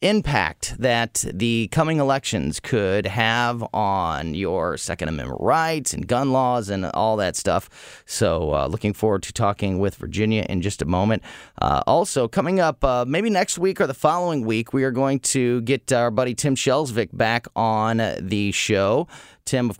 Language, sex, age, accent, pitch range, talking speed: English, male, 30-49, American, 105-150 Hz, 175 wpm